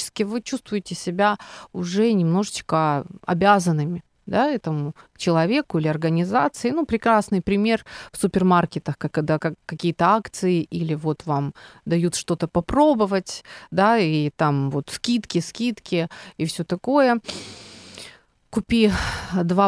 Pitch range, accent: 165-220 Hz, native